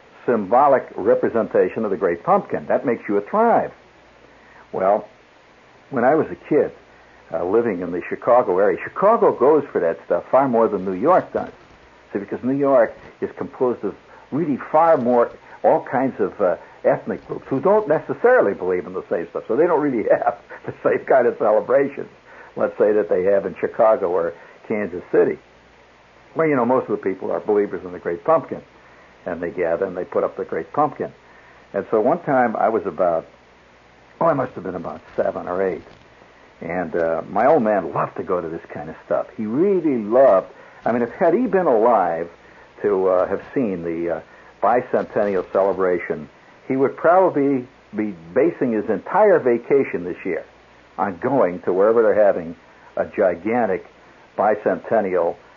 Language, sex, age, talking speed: English, male, 60-79, 180 wpm